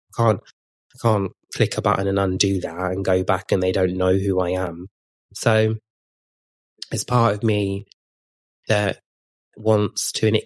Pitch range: 95-105 Hz